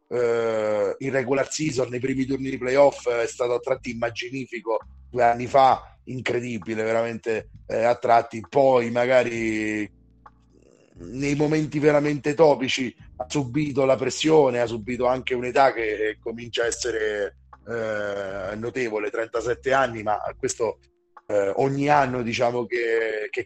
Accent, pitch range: native, 115-140 Hz